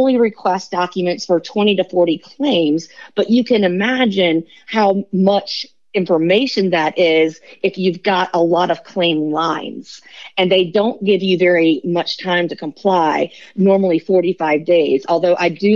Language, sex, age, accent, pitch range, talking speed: English, female, 40-59, American, 170-205 Hz, 150 wpm